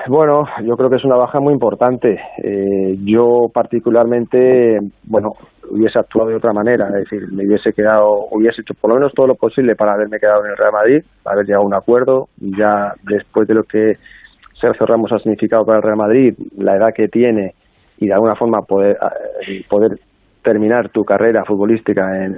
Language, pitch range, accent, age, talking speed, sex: Spanish, 105-120 Hz, Spanish, 30-49, 195 wpm, male